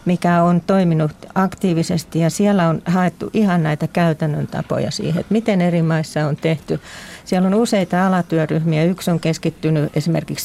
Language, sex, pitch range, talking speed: Finnish, female, 165-190 Hz, 155 wpm